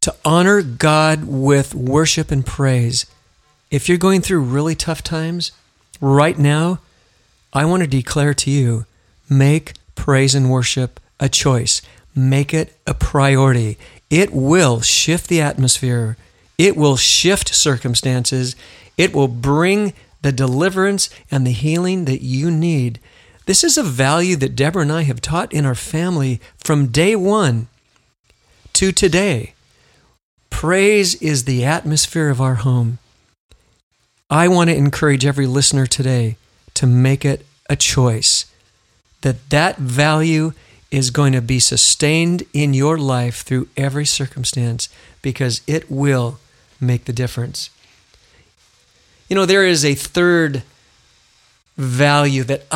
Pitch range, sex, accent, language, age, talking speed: 130-155 Hz, male, American, English, 40-59, 135 wpm